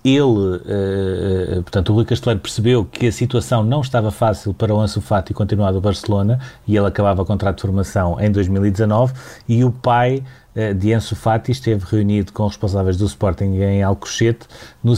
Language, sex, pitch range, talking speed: Portuguese, male, 100-115 Hz, 175 wpm